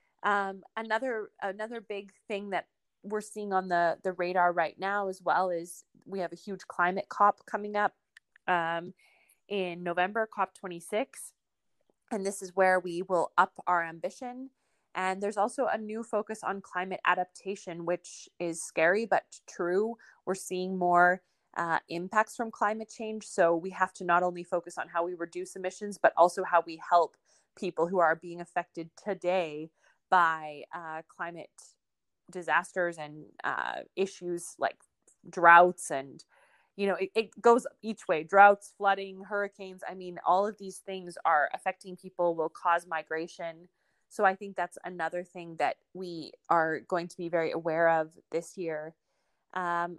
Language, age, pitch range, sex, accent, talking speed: English, 20-39, 175-200 Hz, female, American, 160 wpm